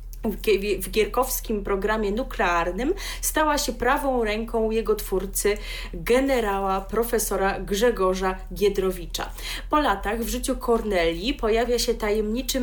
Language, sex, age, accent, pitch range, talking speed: Polish, female, 30-49, native, 190-240 Hz, 105 wpm